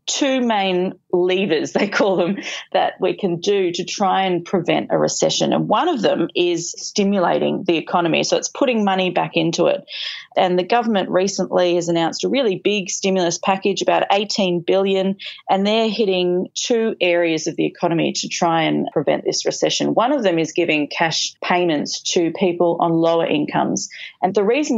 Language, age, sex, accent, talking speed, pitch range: English, 30-49, female, Australian, 180 wpm, 170-200 Hz